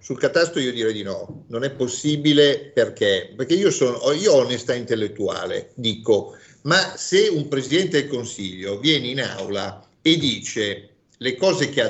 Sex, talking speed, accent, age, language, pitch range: male, 160 wpm, native, 50-69, Italian, 120-180 Hz